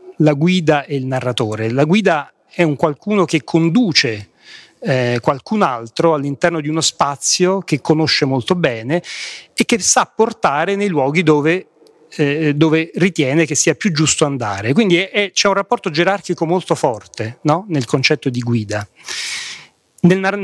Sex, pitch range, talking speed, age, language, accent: male, 140-200 Hz, 145 wpm, 40-59, Italian, native